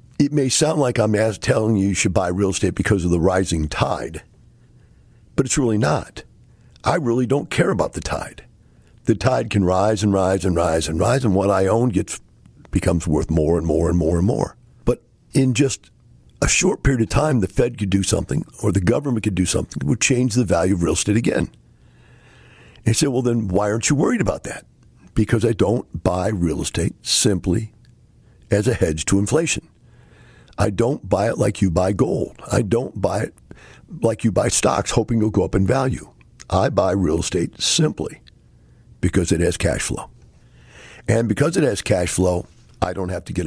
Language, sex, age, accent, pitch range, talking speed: English, male, 50-69, American, 90-120 Hz, 200 wpm